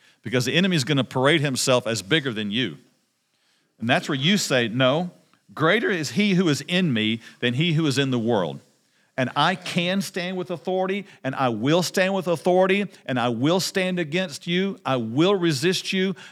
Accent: American